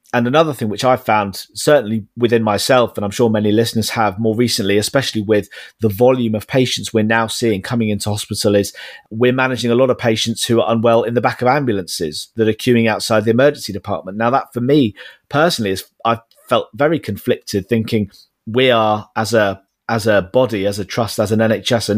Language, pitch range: English, 105-120 Hz